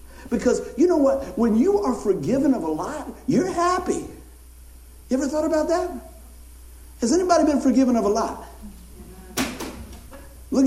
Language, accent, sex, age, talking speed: English, American, male, 60-79, 145 wpm